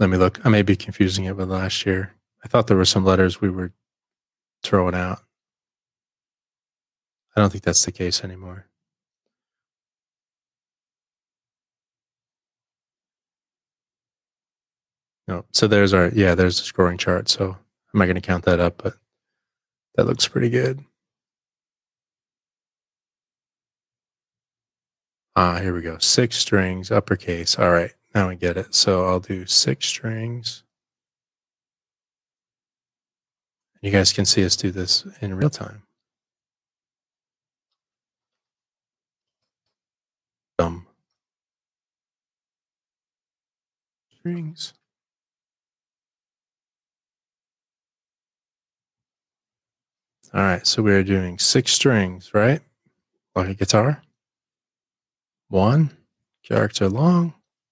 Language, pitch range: English, 90-110 Hz